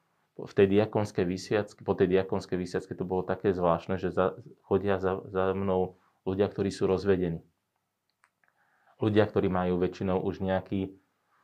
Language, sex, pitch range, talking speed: Slovak, male, 90-100 Hz, 135 wpm